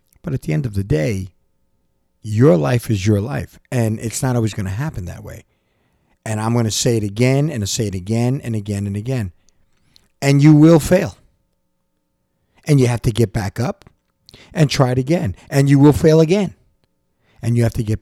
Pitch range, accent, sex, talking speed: 100-125 Hz, American, male, 205 wpm